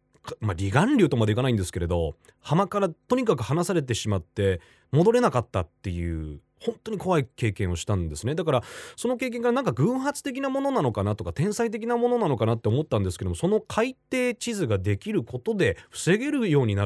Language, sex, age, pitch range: Japanese, male, 30-49, 95-160 Hz